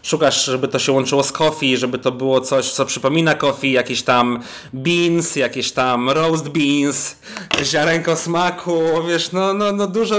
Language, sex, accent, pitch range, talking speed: Polish, male, native, 130-165 Hz, 165 wpm